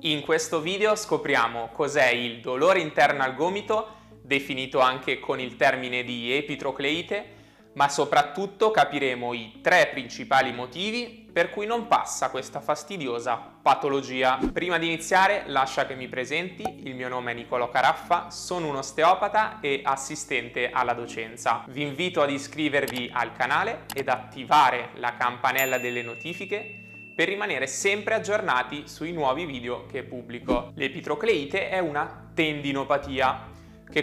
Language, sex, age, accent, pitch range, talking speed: Italian, male, 20-39, native, 125-170 Hz, 135 wpm